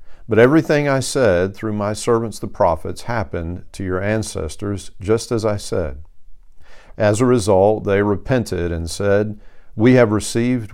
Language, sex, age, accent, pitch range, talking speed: English, male, 50-69, American, 90-105 Hz, 150 wpm